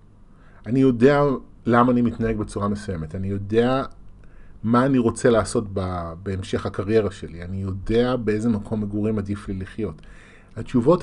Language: Hebrew